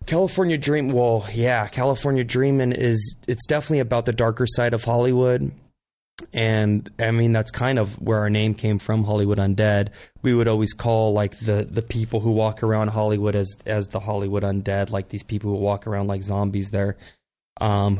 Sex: male